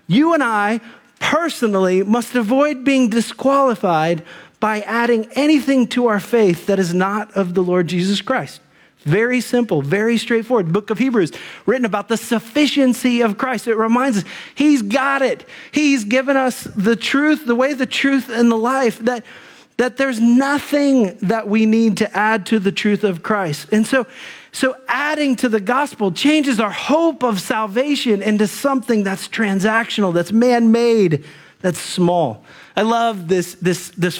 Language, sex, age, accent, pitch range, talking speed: English, male, 40-59, American, 200-260 Hz, 160 wpm